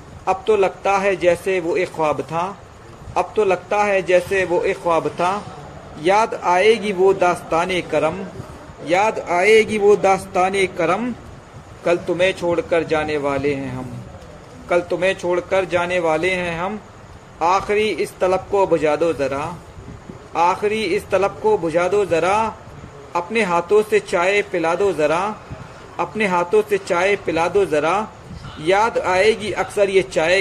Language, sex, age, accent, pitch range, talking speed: Hindi, male, 40-59, native, 165-200 Hz, 150 wpm